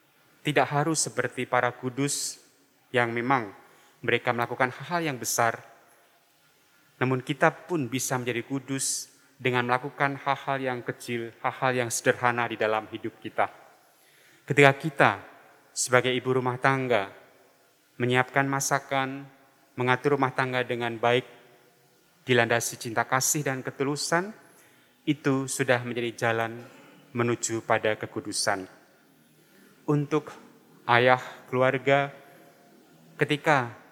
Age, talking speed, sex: 30-49, 105 wpm, male